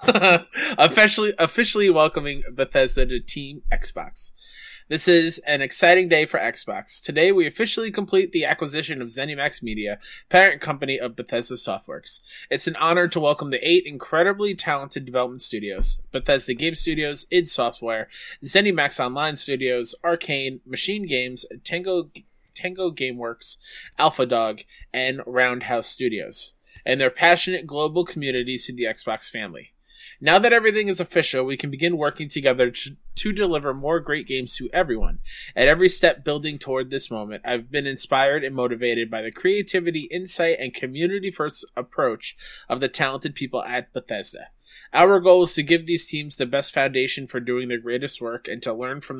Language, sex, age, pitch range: English, male, 20-39, 130-175 Hz